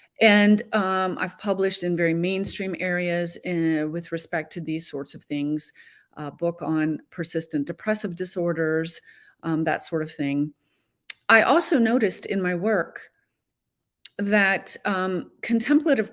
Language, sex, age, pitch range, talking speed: English, female, 40-59, 165-205 Hz, 130 wpm